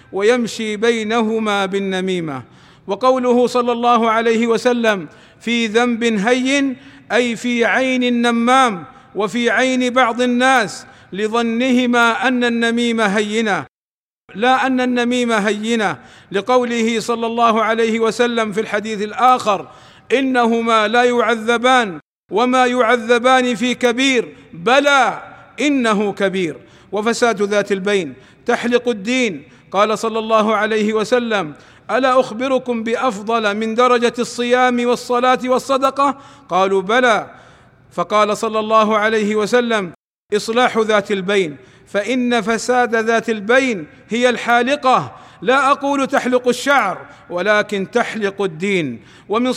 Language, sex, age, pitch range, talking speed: Arabic, male, 50-69, 215-250 Hz, 105 wpm